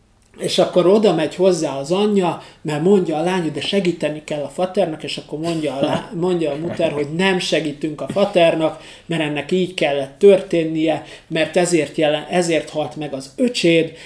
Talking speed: 185 wpm